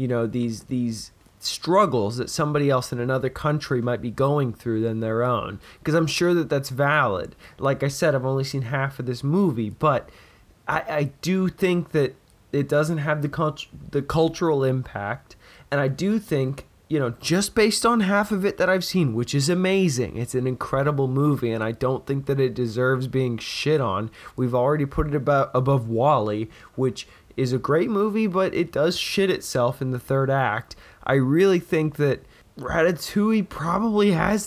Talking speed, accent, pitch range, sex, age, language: 190 wpm, American, 125-175 Hz, male, 20-39, English